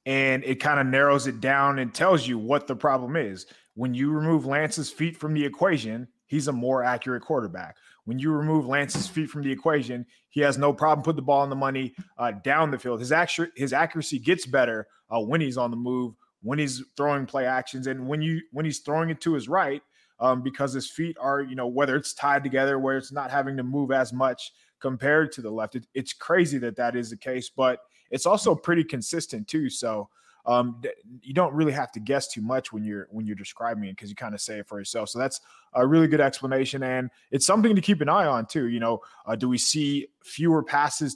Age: 20-39